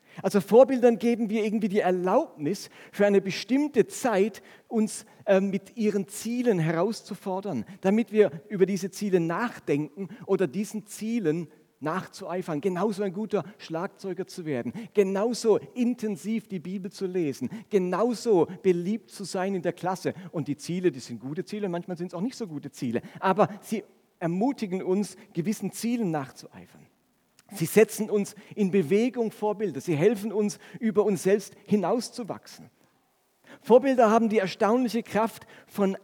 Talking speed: 145 wpm